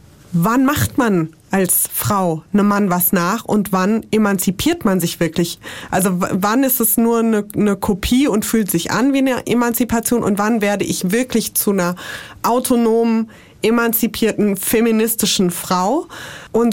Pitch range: 185-230 Hz